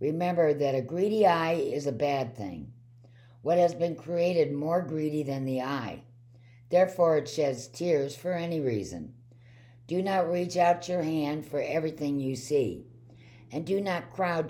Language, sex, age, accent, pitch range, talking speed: English, female, 60-79, American, 120-165 Hz, 160 wpm